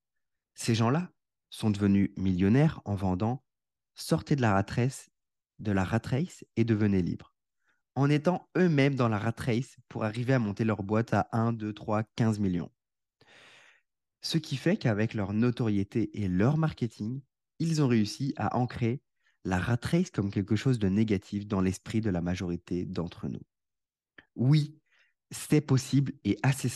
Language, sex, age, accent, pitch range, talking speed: French, male, 20-39, French, 100-130 Hz, 150 wpm